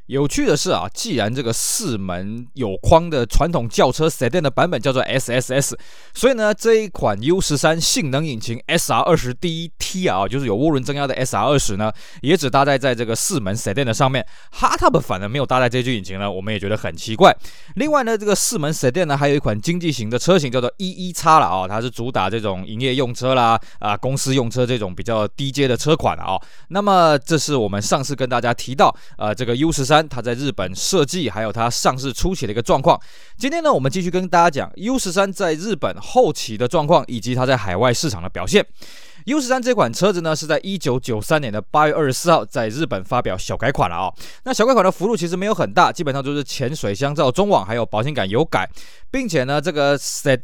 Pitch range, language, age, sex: 120-175 Hz, Chinese, 20-39, male